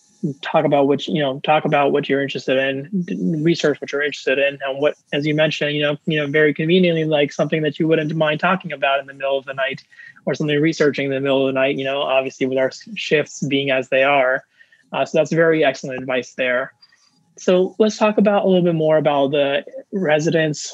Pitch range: 135-155 Hz